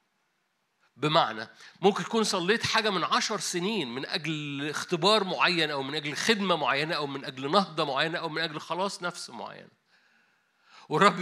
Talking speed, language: 155 wpm, Arabic